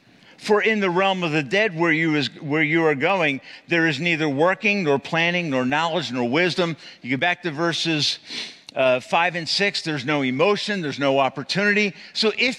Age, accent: 50-69, American